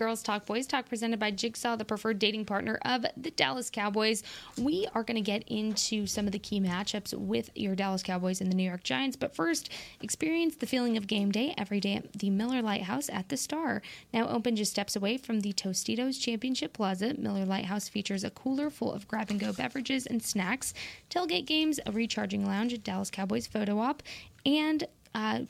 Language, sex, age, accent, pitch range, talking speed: English, female, 10-29, American, 205-275 Hz, 200 wpm